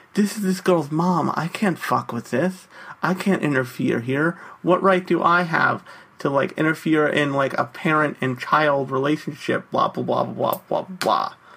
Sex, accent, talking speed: male, American, 180 wpm